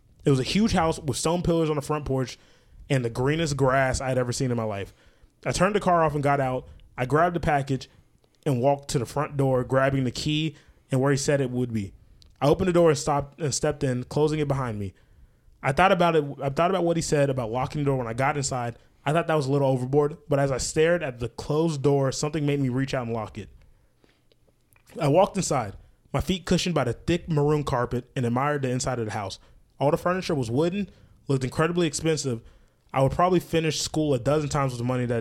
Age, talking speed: 20-39, 245 wpm